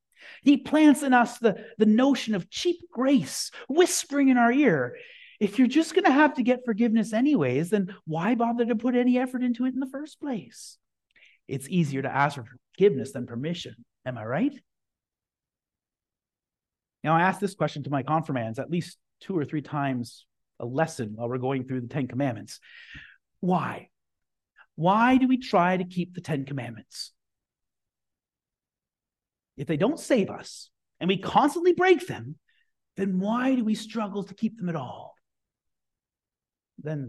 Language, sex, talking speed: English, male, 165 wpm